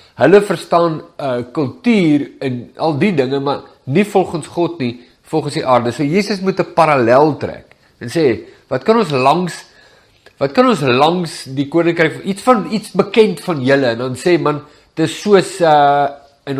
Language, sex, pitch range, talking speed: English, male, 120-165 Hz, 175 wpm